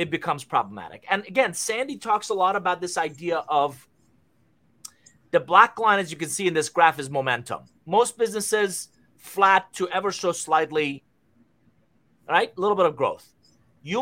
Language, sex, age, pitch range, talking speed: English, male, 30-49, 155-205 Hz, 165 wpm